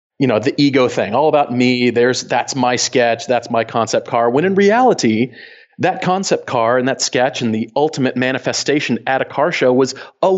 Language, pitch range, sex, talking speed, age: English, 115-140 Hz, male, 200 wpm, 40-59